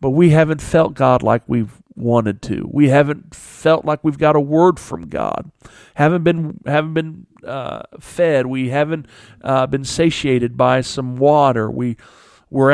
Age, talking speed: 50-69, 165 wpm